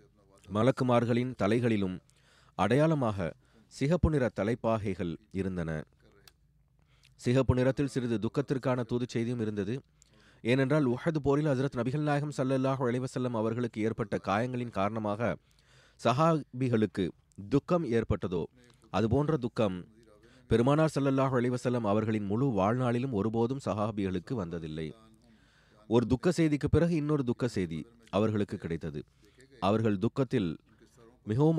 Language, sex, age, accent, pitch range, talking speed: Tamil, male, 30-49, native, 105-130 Hz, 95 wpm